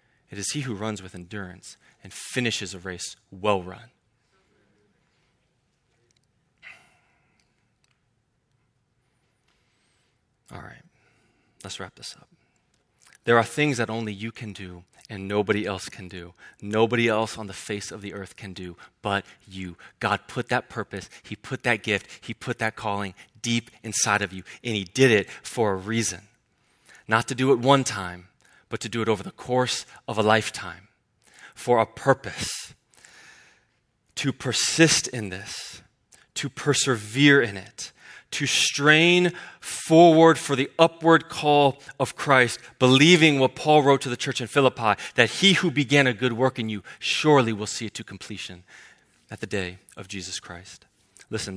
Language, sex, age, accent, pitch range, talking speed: English, male, 20-39, American, 100-130 Hz, 155 wpm